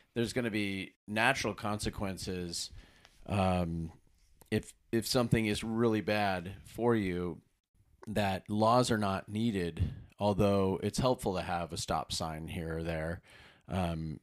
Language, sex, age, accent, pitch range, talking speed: English, male, 30-49, American, 90-110 Hz, 135 wpm